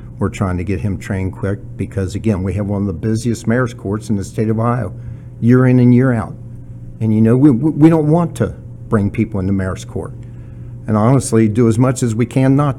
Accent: American